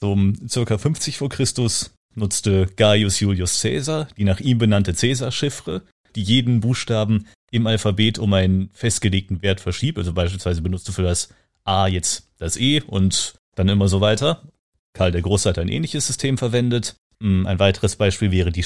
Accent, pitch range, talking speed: German, 95-115 Hz, 165 wpm